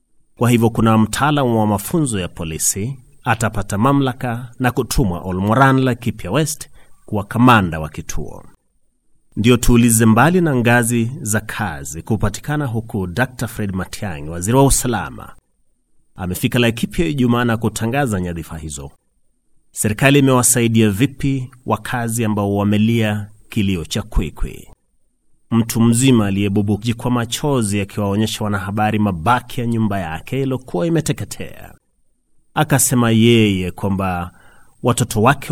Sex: male